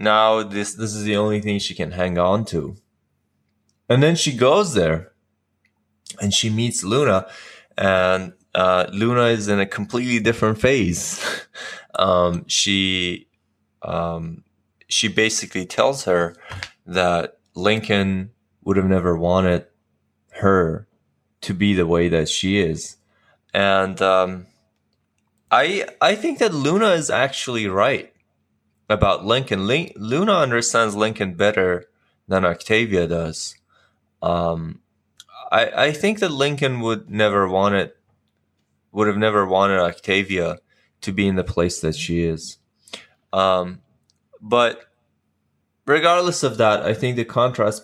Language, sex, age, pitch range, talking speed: English, male, 20-39, 90-110 Hz, 130 wpm